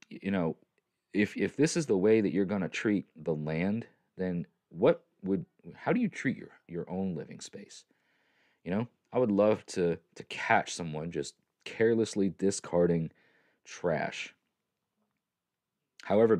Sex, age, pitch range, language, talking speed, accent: male, 30-49, 85-110 Hz, English, 145 wpm, American